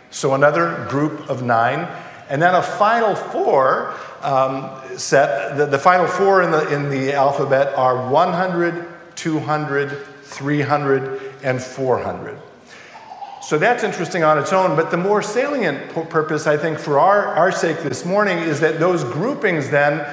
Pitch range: 145-185 Hz